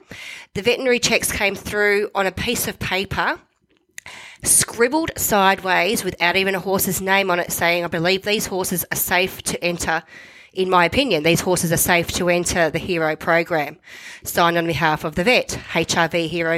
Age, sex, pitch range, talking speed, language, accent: 30-49, female, 175-205 Hz, 175 wpm, English, Australian